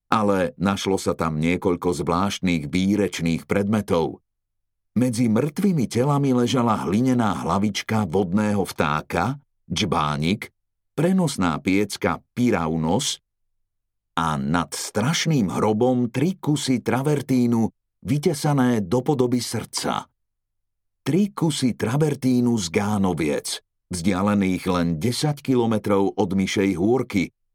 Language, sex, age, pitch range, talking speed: Slovak, male, 50-69, 95-125 Hz, 95 wpm